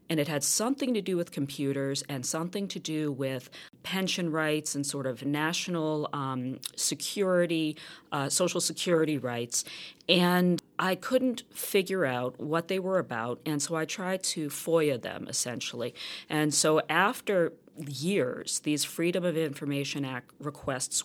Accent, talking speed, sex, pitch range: American, 150 wpm, female, 135-180 Hz